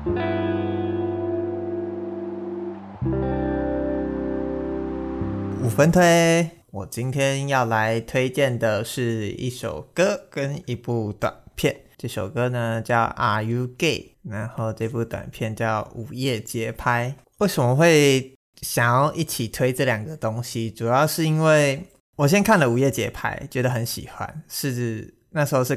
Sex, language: male, Chinese